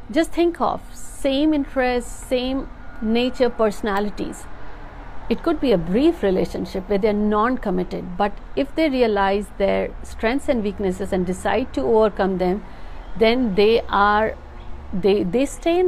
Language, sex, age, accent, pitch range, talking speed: Hindi, female, 60-79, native, 195-255 Hz, 145 wpm